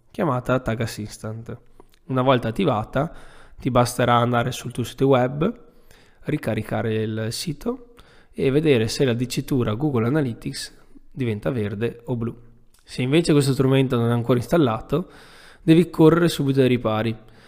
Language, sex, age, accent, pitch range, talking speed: Italian, male, 20-39, native, 120-150 Hz, 135 wpm